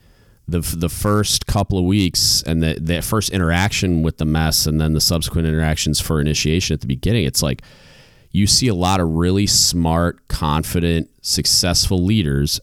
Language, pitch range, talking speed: English, 80-95 Hz, 165 wpm